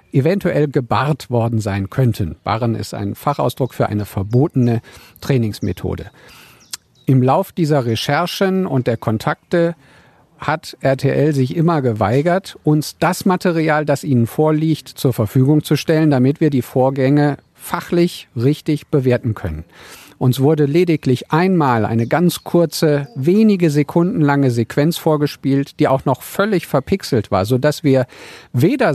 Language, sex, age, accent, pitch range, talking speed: German, male, 50-69, German, 125-165 Hz, 135 wpm